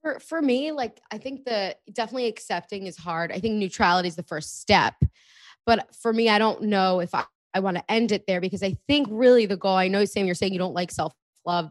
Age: 20-39